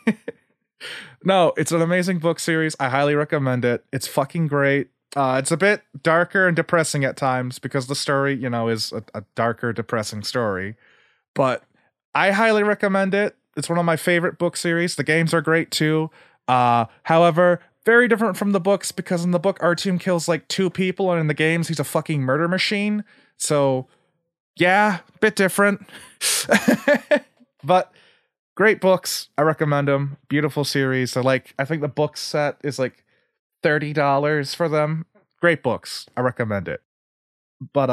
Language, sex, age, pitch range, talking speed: English, male, 20-39, 140-185 Hz, 170 wpm